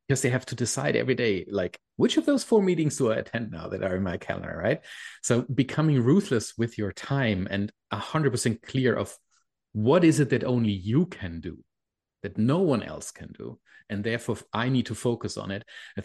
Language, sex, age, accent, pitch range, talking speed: English, male, 30-49, German, 100-125 Hz, 210 wpm